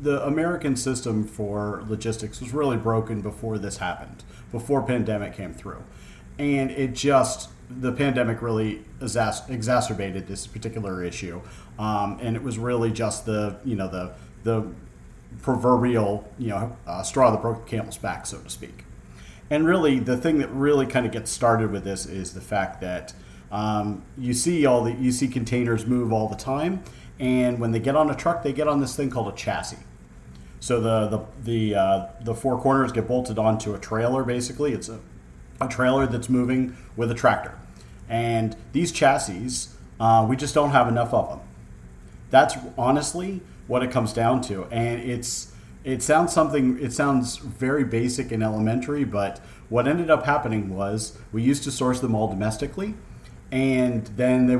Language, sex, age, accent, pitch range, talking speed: English, male, 40-59, American, 105-130 Hz, 175 wpm